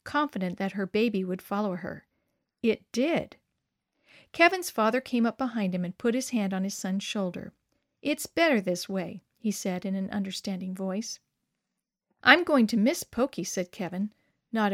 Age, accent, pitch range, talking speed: 50-69, American, 190-245 Hz, 165 wpm